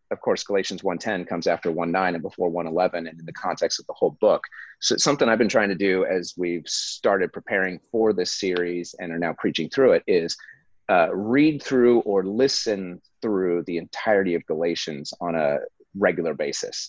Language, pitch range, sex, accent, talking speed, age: English, 90-115 Hz, male, American, 195 wpm, 30-49